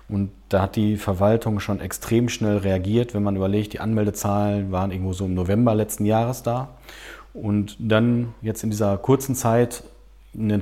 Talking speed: 170 wpm